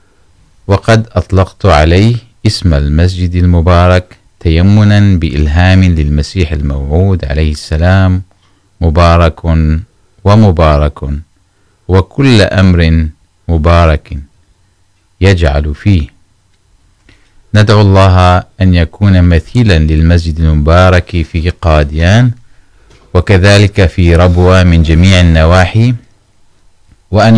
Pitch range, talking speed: 80-100 Hz, 75 wpm